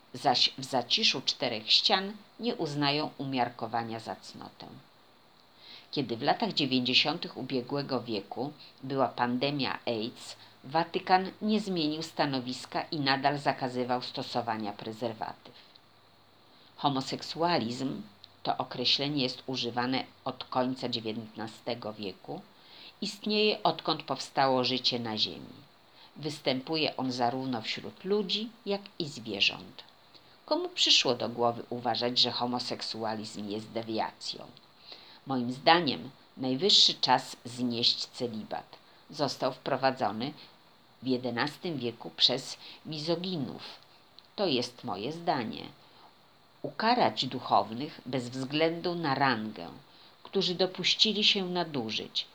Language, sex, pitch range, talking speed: Polish, female, 120-170 Hz, 100 wpm